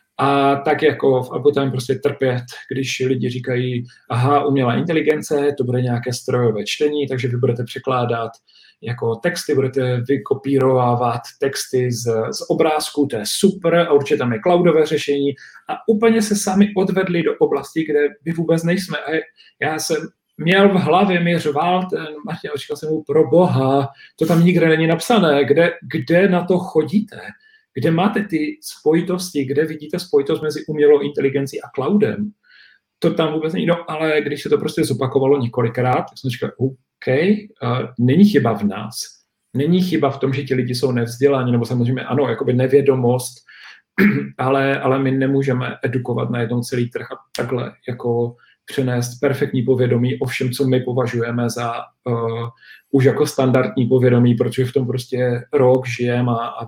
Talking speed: 160 wpm